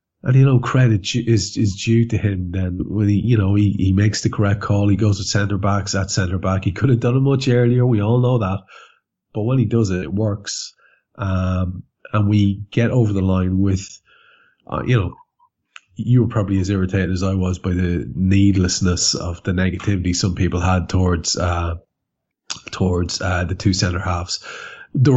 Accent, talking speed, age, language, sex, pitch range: Irish, 200 wpm, 30-49, English, male, 95-115 Hz